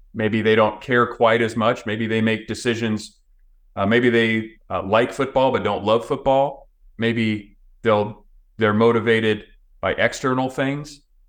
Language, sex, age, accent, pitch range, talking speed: English, male, 30-49, American, 95-120 Hz, 150 wpm